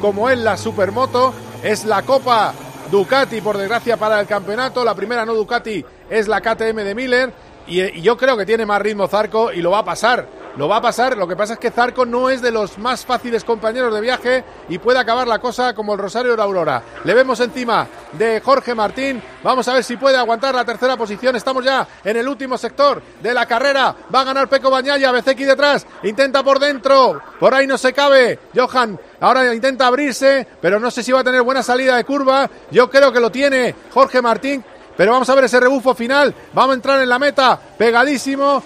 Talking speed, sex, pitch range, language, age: 220 wpm, male, 220-265 Hz, Spanish, 40-59